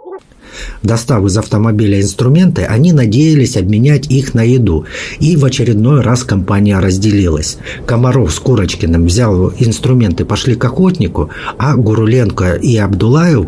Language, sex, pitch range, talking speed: Russian, male, 90-125 Hz, 125 wpm